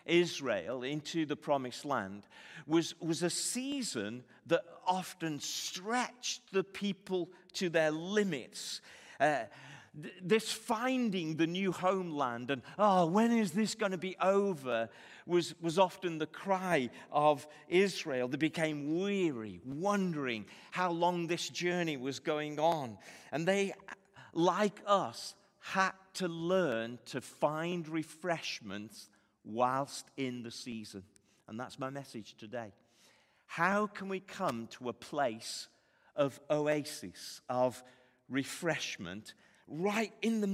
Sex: male